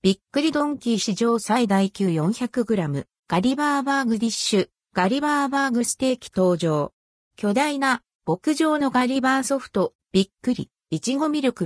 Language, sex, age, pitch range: Japanese, female, 50-69, 185-265 Hz